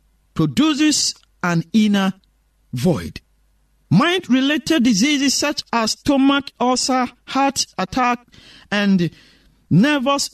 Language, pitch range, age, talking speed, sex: English, 190-285 Hz, 50-69, 80 wpm, male